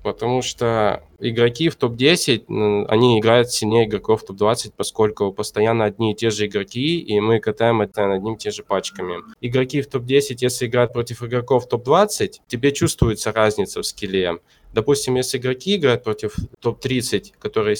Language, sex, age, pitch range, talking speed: Russian, male, 20-39, 105-125 Hz, 160 wpm